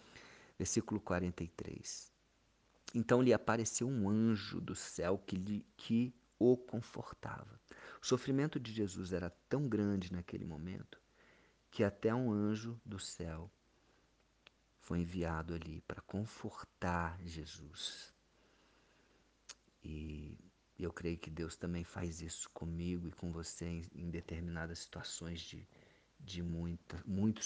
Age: 50-69